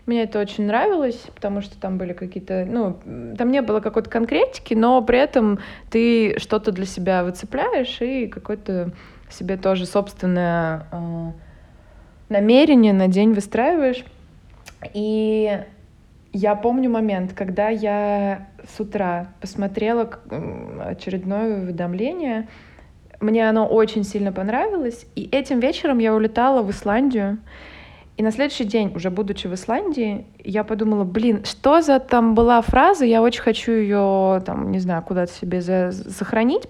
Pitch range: 185-230 Hz